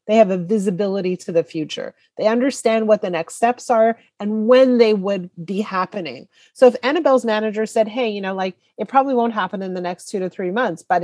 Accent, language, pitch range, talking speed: American, English, 185-240 Hz, 225 wpm